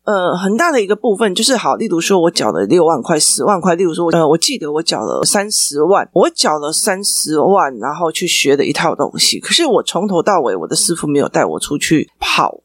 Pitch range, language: 160-220 Hz, Chinese